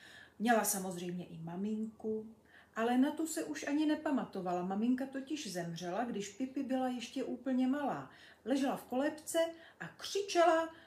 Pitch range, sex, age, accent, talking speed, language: 180-260 Hz, female, 40-59, native, 140 wpm, Czech